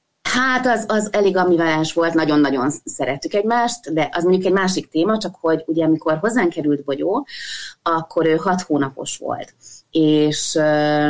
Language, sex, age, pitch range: Hungarian, female, 30-49, 160-220 Hz